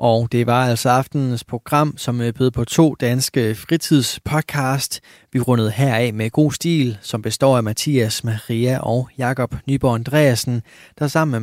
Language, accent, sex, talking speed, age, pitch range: Danish, native, male, 160 wpm, 20-39, 115-130 Hz